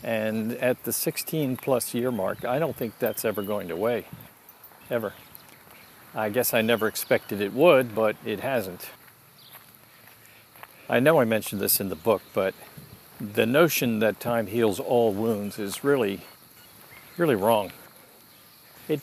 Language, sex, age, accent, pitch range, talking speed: English, male, 50-69, American, 105-130 Hz, 145 wpm